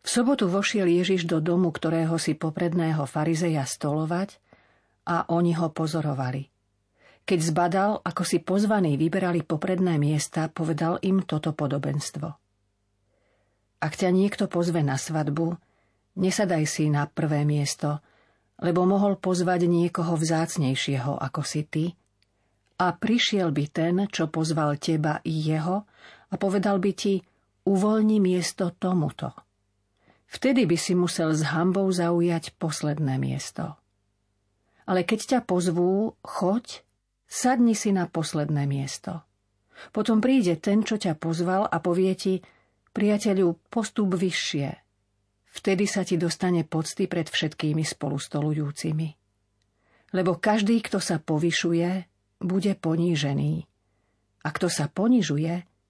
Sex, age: female, 40-59